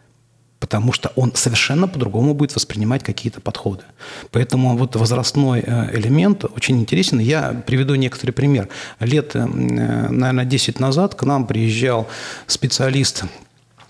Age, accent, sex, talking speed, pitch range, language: 40-59, native, male, 115 wpm, 115-140 Hz, Russian